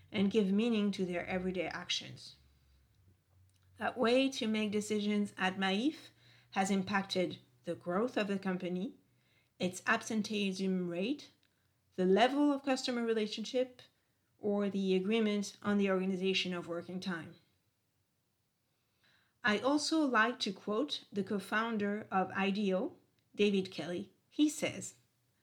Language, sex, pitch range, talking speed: English, female, 180-220 Hz, 120 wpm